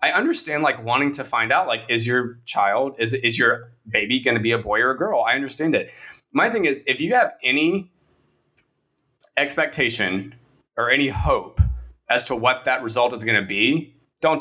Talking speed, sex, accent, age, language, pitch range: 195 wpm, male, American, 20-39, English, 115-145 Hz